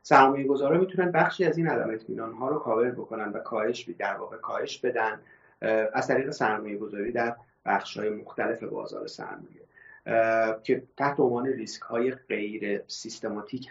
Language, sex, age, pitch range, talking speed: Persian, male, 30-49, 115-170 Hz, 145 wpm